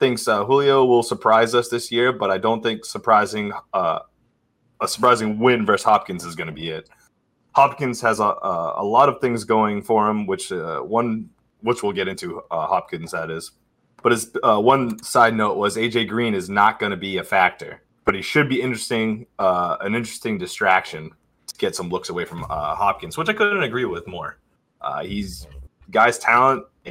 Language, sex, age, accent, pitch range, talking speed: English, male, 20-39, American, 95-125 Hz, 195 wpm